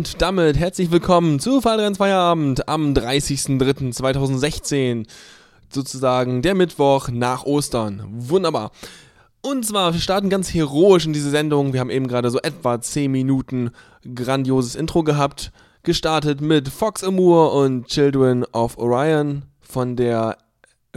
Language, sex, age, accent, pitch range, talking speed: German, male, 10-29, German, 125-170 Hz, 125 wpm